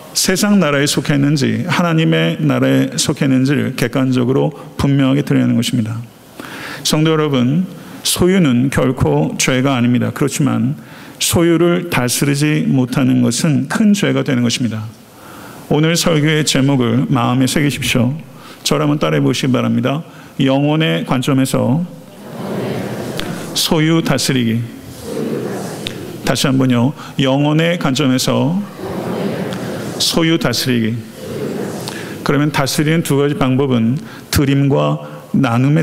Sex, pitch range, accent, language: male, 130-155 Hz, native, Korean